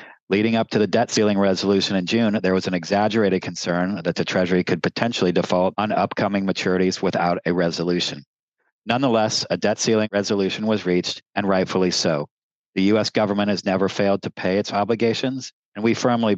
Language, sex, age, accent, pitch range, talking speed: English, male, 50-69, American, 90-110 Hz, 180 wpm